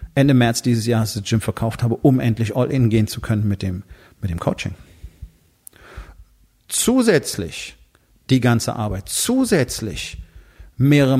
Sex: male